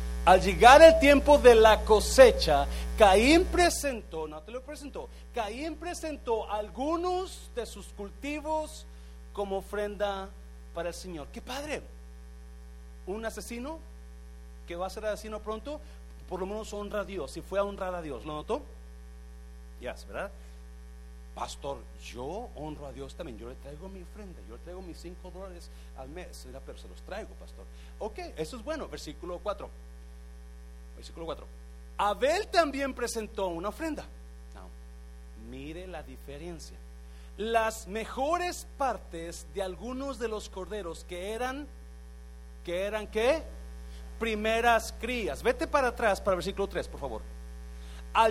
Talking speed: 145 wpm